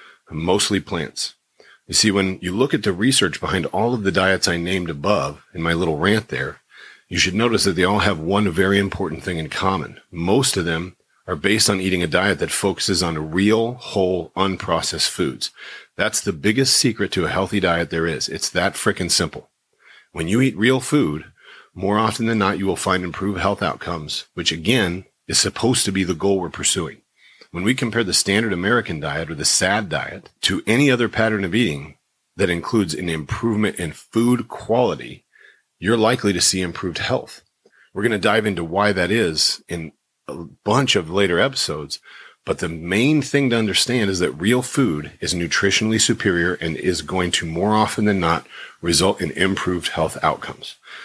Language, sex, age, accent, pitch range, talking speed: English, male, 40-59, American, 85-110 Hz, 190 wpm